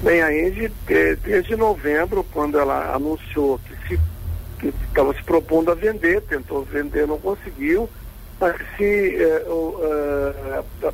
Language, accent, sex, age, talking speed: Portuguese, Brazilian, male, 60-79, 120 wpm